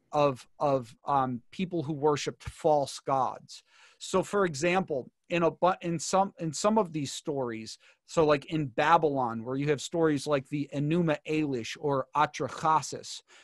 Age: 40-59